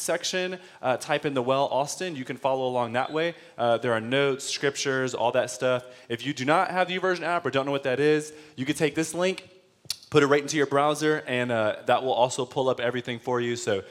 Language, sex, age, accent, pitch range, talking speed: English, male, 20-39, American, 125-160 Hz, 245 wpm